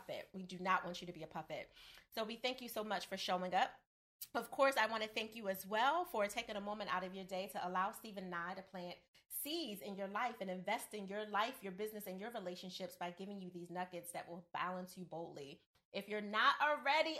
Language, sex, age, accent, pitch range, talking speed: English, female, 30-49, American, 185-270 Hz, 240 wpm